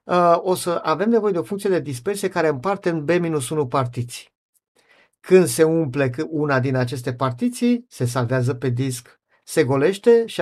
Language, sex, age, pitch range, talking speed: Romanian, male, 50-69, 130-195 Hz, 160 wpm